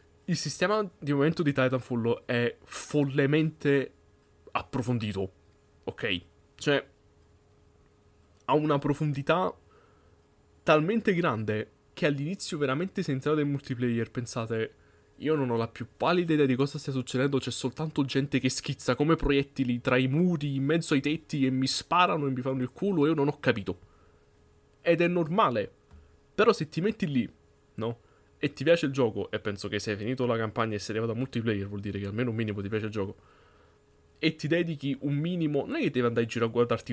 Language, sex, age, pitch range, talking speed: Italian, male, 20-39, 110-145 Hz, 185 wpm